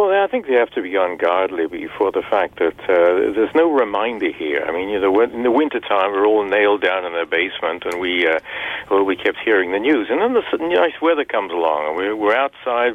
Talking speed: 240 wpm